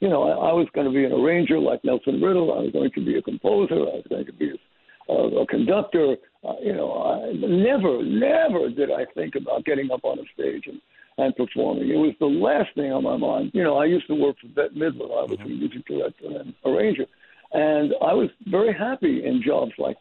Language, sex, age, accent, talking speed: English, male, 60-79, American, 230 wpm